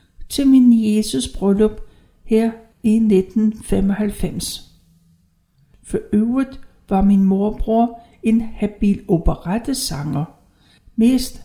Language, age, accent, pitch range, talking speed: Danish, 60-79, native, 180-230 Hz, 80 wpm